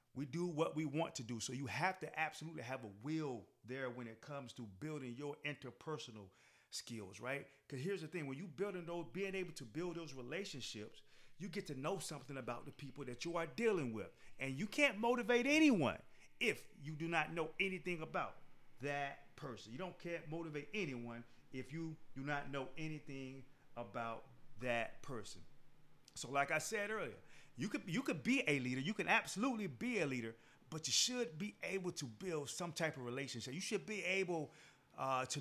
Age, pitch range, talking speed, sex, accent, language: 40-59, 130-180 Hz, 195 wpm, male, American, English